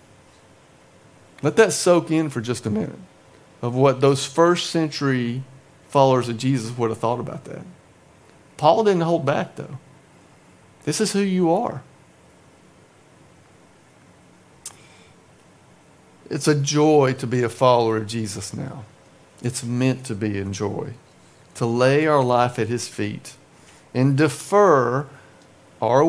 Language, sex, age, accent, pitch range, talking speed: English, male, 50-69, American, 120-165 Hz, 130 wpm